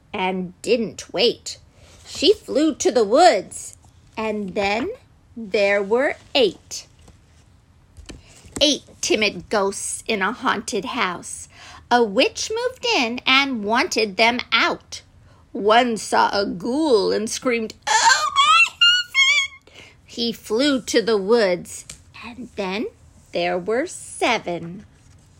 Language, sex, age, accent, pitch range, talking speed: English, female, 50-69, American, 215-340 Hz, 110 wpm